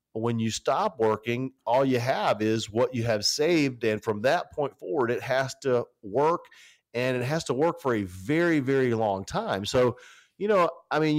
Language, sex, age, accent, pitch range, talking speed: English, male, 40-59, American, 115-150 Hz, 205 wpm